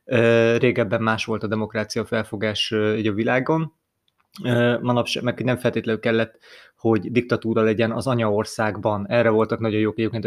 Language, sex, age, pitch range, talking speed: Hungarian, male, 30-49, 110-130 Hz, 135 wpm